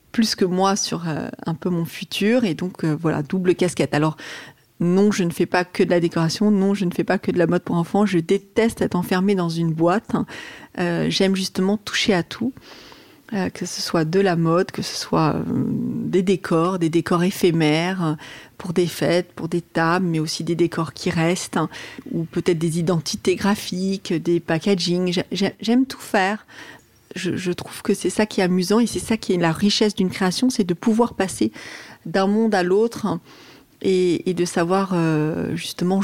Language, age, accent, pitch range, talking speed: French, 40-59, French, 175-205 Hz, 200 wpm